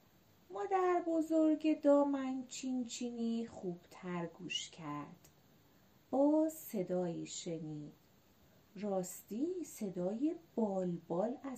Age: 30-49